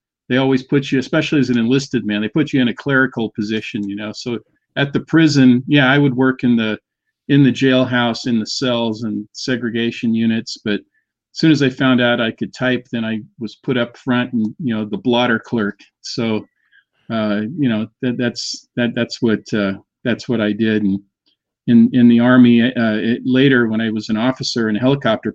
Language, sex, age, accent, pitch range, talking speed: English, male, 50-69, American, 110-130 Hz, 210 wpm